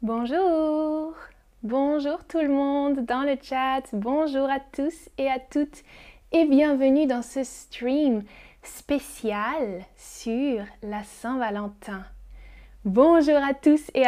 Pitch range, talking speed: 230-295 Hz, 115 wpm